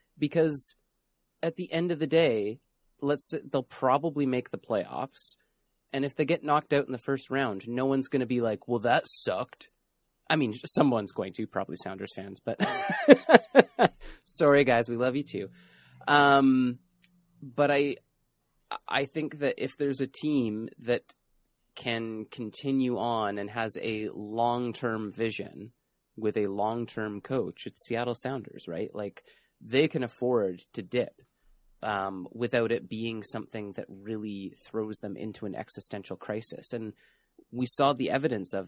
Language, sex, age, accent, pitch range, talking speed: English, male, 30-49, American, 110-135 Hz, 155 wpm